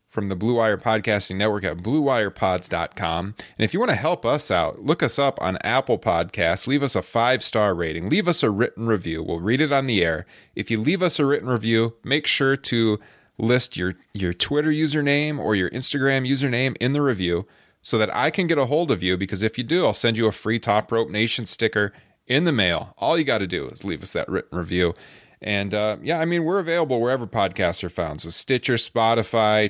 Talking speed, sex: 220 wpm, male